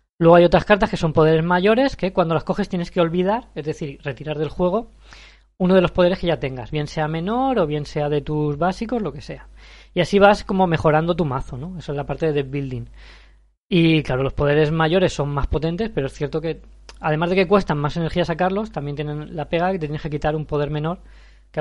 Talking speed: 240 wpm